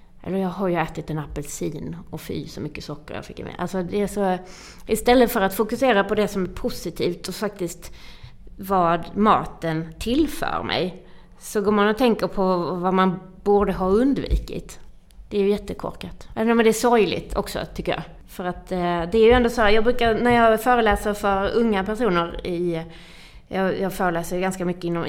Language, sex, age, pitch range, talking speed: English, female, 20-39, 180-225 Hz, 185 wpm